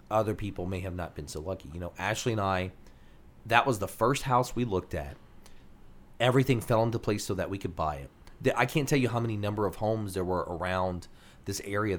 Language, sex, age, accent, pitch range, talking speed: English, male, 30-49, American, 90-115 Hz, 225 wpm